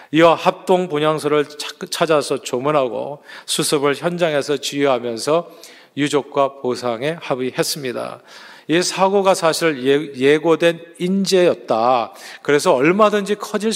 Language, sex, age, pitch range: Korean, male, 40-59, 135-170 Hz